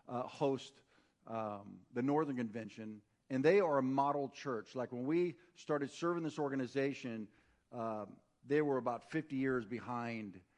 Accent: American